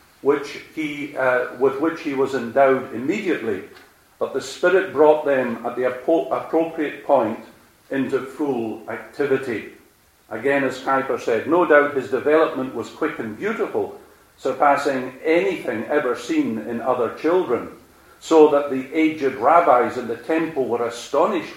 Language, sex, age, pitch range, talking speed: English, male, 50-69, 120-155 Hz, 135 wpm